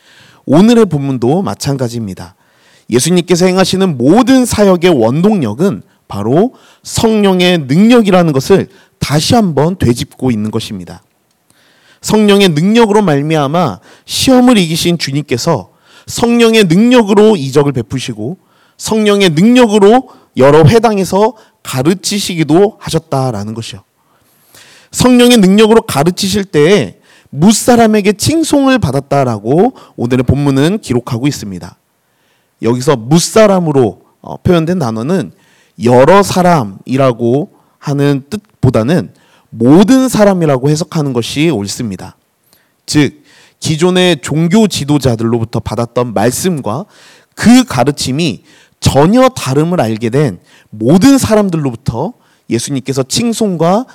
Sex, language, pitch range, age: male, Korean, 130-205 Hz, 30-49